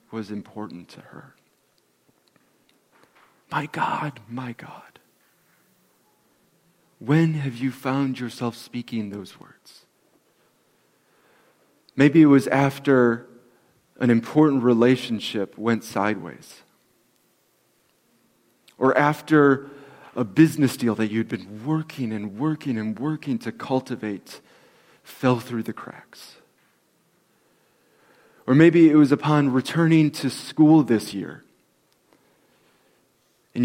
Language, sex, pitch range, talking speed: English, male, 115-145 Hz, 100 wpm